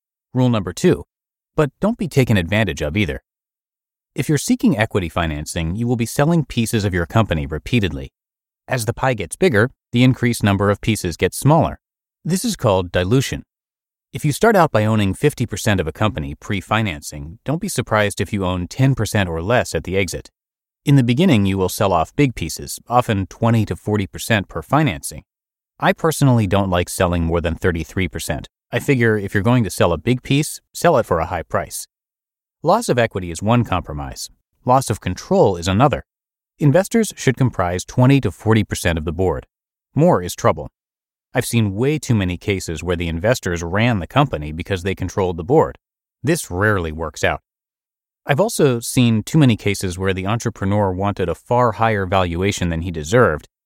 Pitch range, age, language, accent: 90-125 Hz, 30-49, English, American